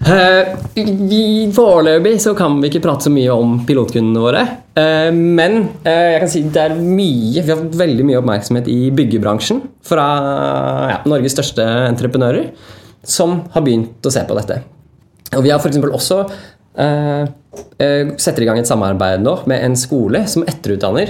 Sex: male